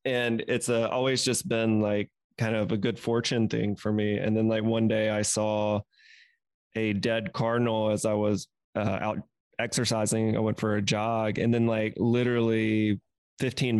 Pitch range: 110-120 Hz